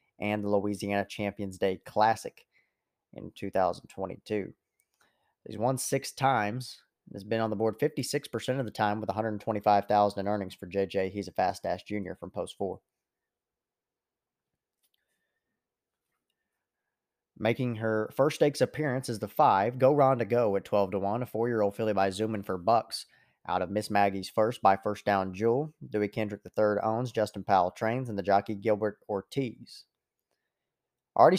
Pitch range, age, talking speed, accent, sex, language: 100-120 Hz, 30-49, 145 wpm, American, male, English